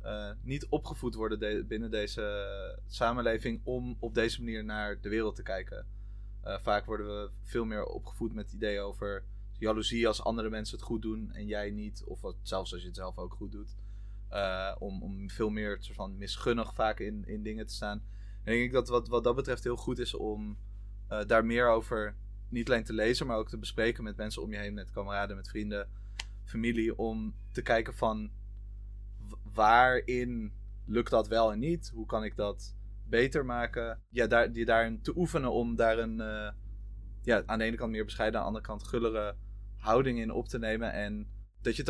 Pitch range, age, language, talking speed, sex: 100-115 Hz, 20-39, Dutch, 205 wpm, male